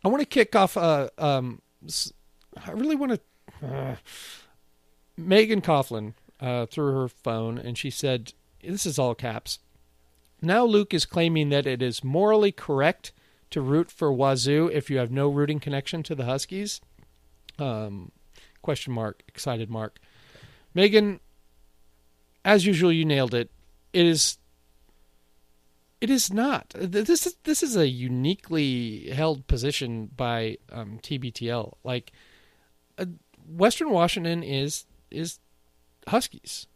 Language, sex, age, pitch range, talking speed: English, male, 40-59, 110-165 Hz, 130 wpm